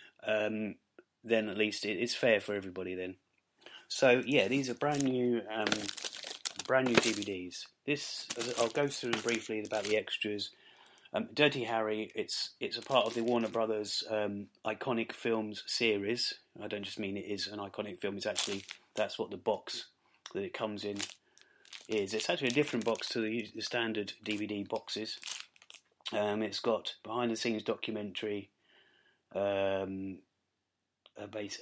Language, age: English, 30-49